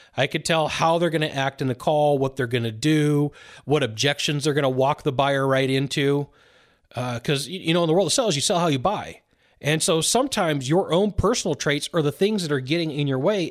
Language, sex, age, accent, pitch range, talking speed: English, male, 30-49, American, 135-170 Hz, 250 wpm